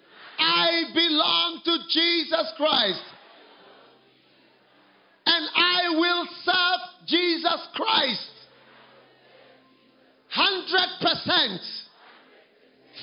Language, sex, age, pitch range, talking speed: English, male, 50-69, 320-385 Hz, 55 wpm